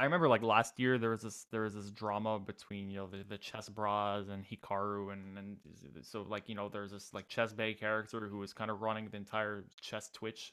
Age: 20-39